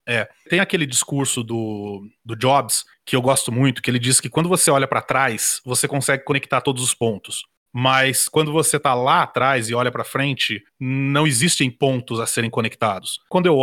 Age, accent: 30-49, Brazilian